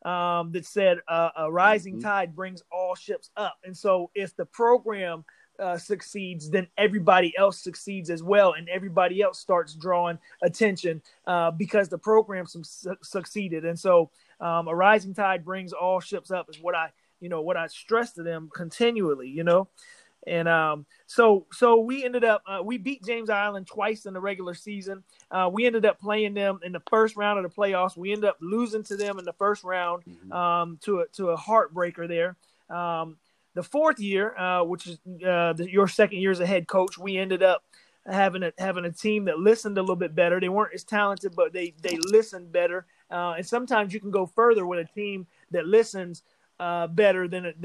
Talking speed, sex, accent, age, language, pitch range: 200 wpm, male, American, 30-49, English, 175-205 Hz